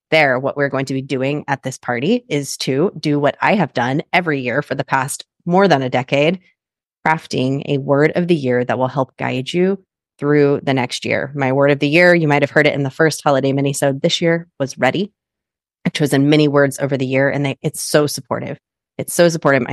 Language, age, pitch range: English, 30-49, 130-155 Hz